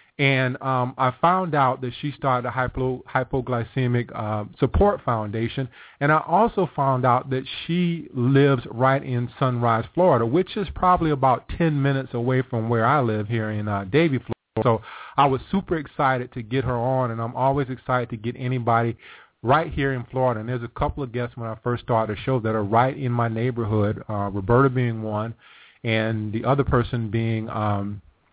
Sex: male